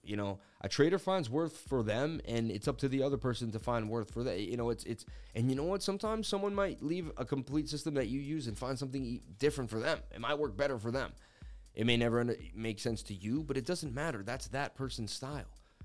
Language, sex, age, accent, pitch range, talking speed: English, male, 30-49, American, 110-140 Hz, 245 wpm